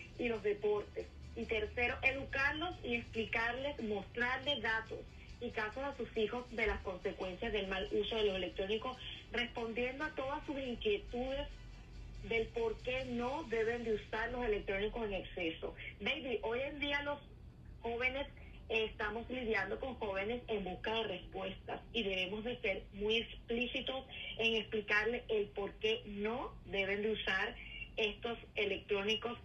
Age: 30-49